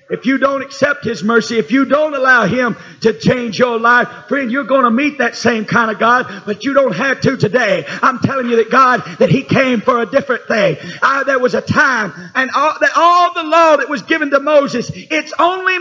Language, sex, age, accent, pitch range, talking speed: English, male, 50-69, American, 195-265 Hz, 230 wpm